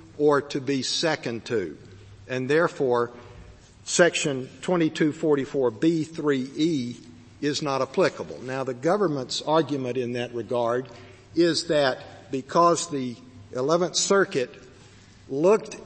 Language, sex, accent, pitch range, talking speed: English, male, American, 120-155 Hz, 100 wpm